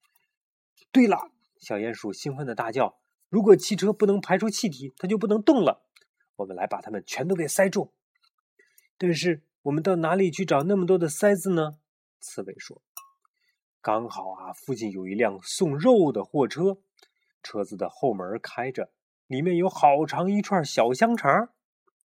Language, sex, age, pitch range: Chinese, male, 30-49, 130-210 Hz